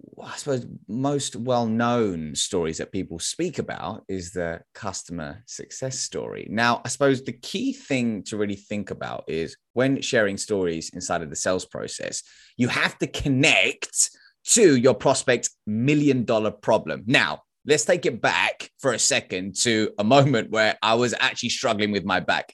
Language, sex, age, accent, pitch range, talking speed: English, male, 20-39, British, 110-140 Hz, 160 wpm